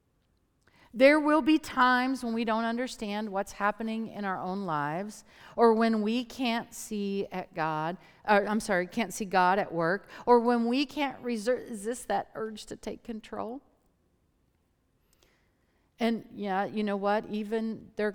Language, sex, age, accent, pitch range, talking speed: English, female, 50-69, American, 160-230 Hz, 160 wpm